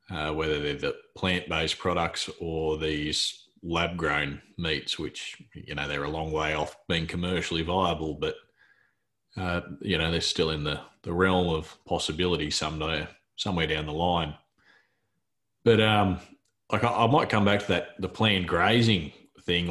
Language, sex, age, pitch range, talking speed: English, male, 30-49, 80-90 Hz, 160 wpm